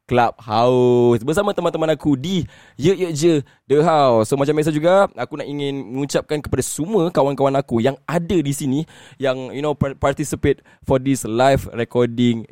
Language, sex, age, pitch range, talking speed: Malay, male, 10-29, 105-145 Hz, 165 wpm